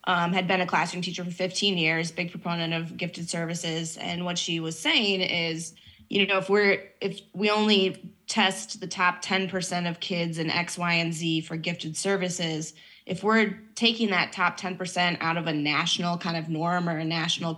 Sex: female